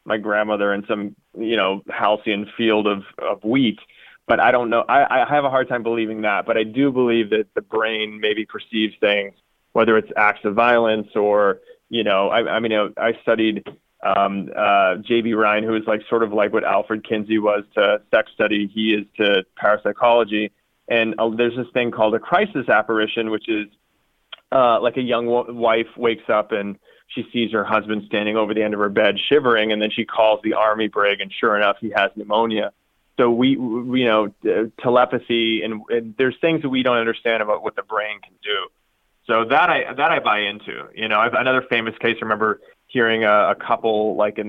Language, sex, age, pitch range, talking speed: English, male, 30-49, 105-115 Hz, 210 wpm